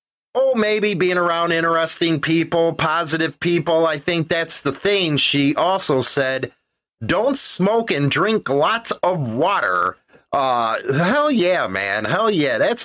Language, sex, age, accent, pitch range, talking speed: English, male, 30-49, American, 150-200 Hz, 140 wpm